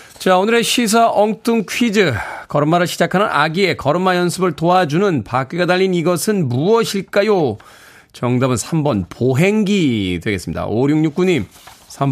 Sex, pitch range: male, 120-175 Hz